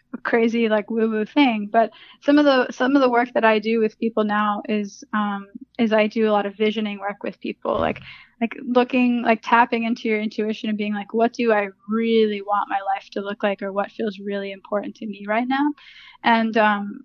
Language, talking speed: English, 220 wpm